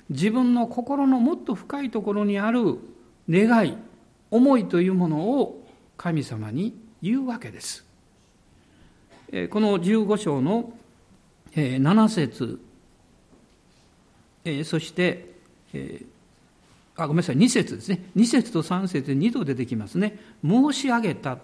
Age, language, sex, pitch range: 60-79, Japanese, male, 155-245 Hz